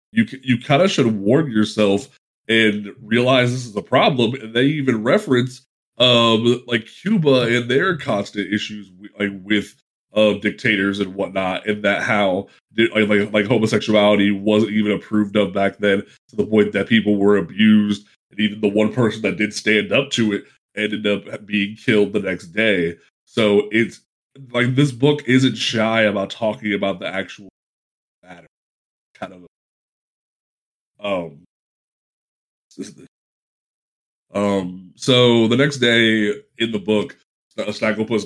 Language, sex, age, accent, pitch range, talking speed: English, male, 20-39, American, 105-115 Hz, 150 wpm